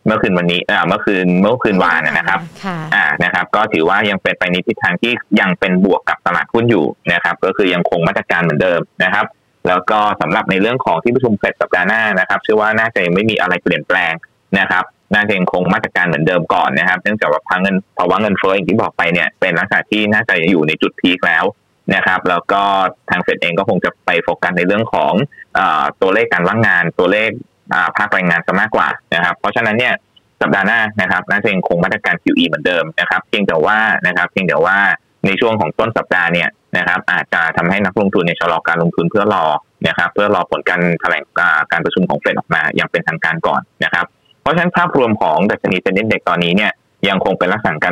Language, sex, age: Thai, male, 20-39